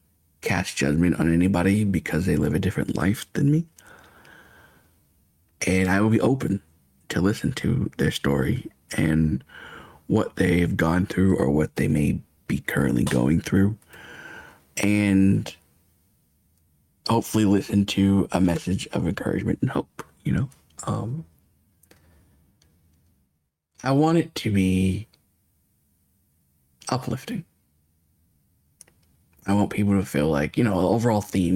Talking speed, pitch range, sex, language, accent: 125 wpm, 80-100 Hz, male, English, American